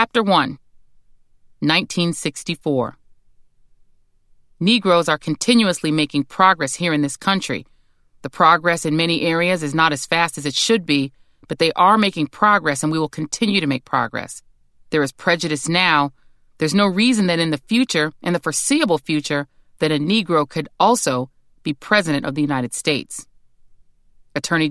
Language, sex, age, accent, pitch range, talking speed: English, female, 40-59, American, 140-180 Hz, 155 wpm